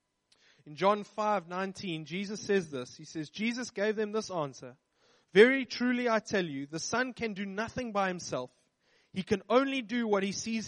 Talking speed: 185 wpm